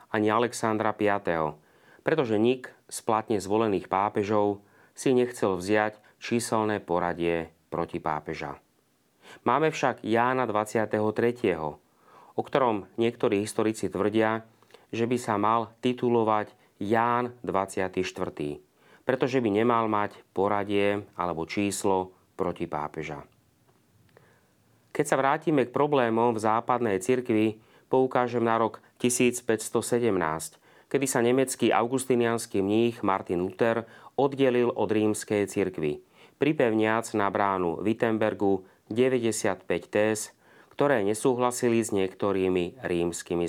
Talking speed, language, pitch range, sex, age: 100 wpm, Slovak, 95-120 Hz, male, 30-49